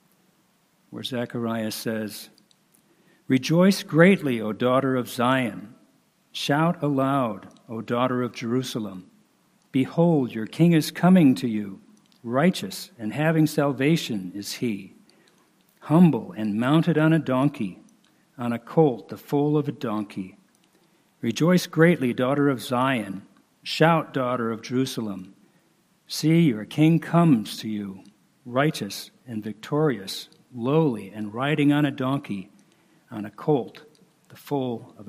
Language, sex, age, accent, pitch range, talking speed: English, male, 60-79, American, 120-170 Hz, 125 wpm